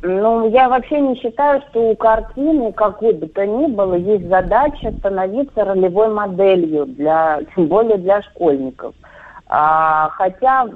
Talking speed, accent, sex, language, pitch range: 140 wpm, native, female, Russian, 175-230 Hz